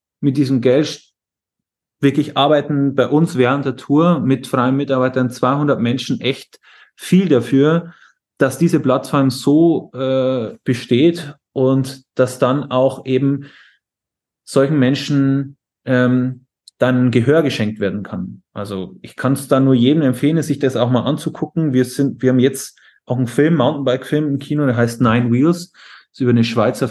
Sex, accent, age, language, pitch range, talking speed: male, German, 30-49, German, 115-140 Hz, 160 wpm